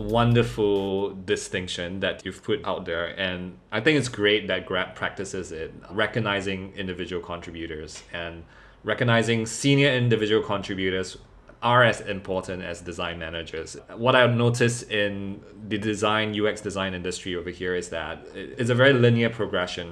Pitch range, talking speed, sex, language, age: 95-120 Hz, 145 wpm, male, English, 20-39